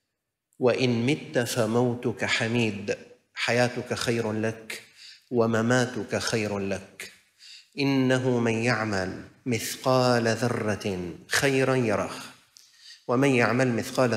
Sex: male